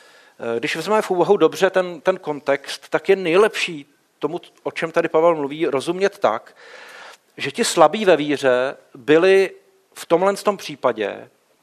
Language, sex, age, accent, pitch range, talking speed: Czech, male, 40-59, native, 140-180 Hz, 145 wpm